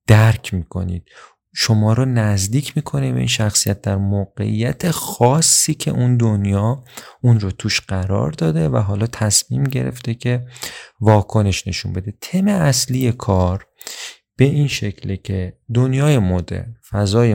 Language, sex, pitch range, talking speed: Persian, male, 100-125 Hz, 130 wpm